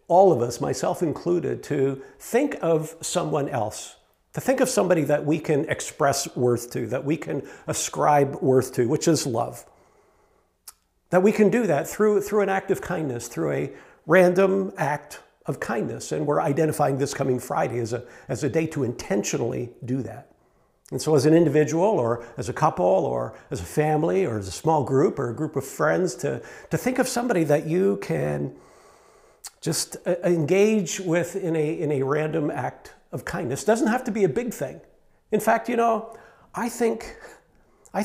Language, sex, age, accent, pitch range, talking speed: English, male, 50-69, American, 130-185 Hz, 185 wpm